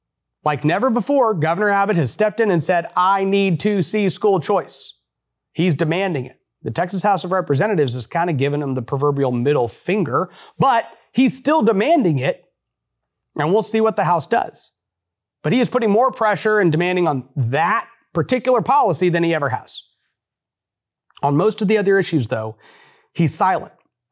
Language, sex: English, male